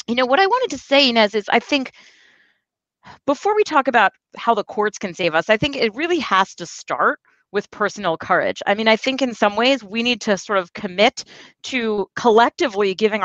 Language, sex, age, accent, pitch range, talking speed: English, female, 40-59, American, 190-245 Hz, 215 wpm